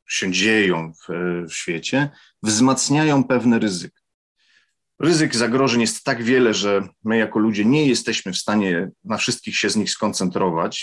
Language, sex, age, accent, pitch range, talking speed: Polish, male, 40-59, native, 105-130 Hz, 150 wpm